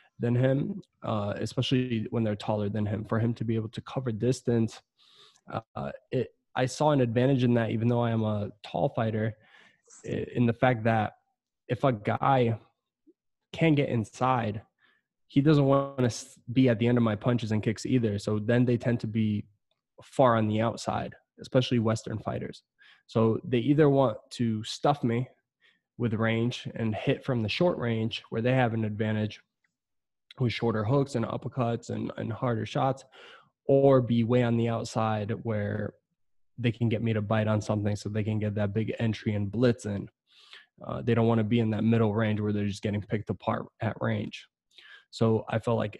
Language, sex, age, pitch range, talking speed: English, male, 20-39, 110-130 Hz, 190 wpm